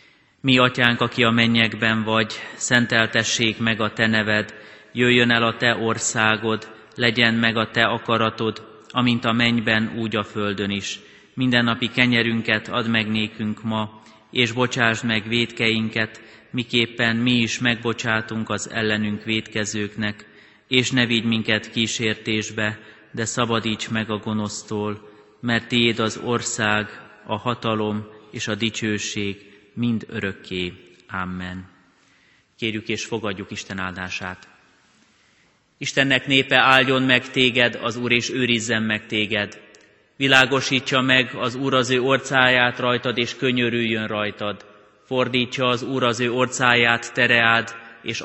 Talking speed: 130 wpm